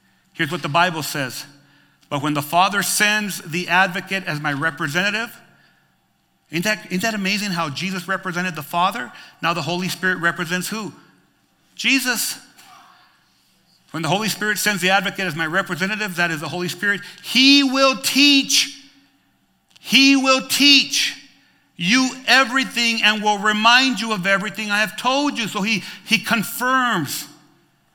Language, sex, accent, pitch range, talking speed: English, male, American, 175-240 Hz, 150 wpm